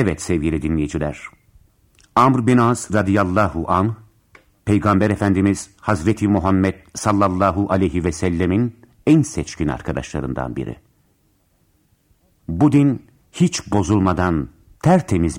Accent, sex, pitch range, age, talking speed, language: native, male, 80-100 Hz, 60-79, 100 wpm, Turkish